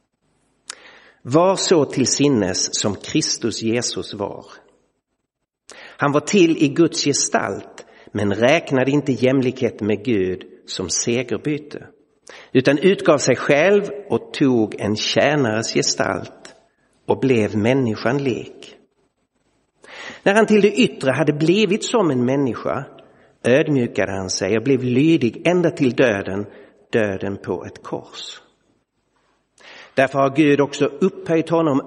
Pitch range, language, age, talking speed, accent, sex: 120-150 Hz, Swedish, 60-79, 120 wpm, native, male